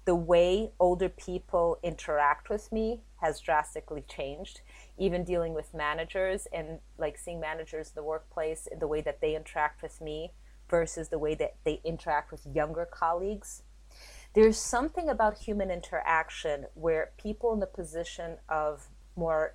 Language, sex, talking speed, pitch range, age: English, female, 150 wpm, 150-175 Hz, 30-49